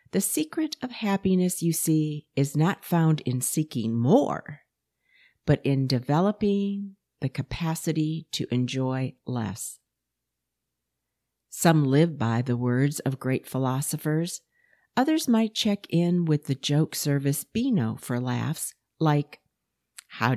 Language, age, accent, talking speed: English, 50-69, American, 120 wpm